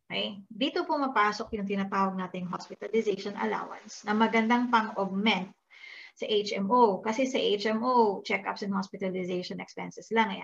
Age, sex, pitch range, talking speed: 20-39, female, 195-235 Hz, 130 wpm